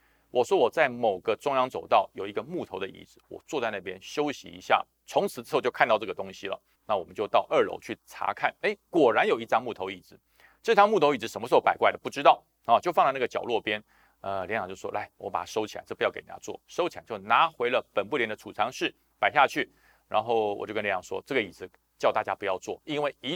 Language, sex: Chinese, male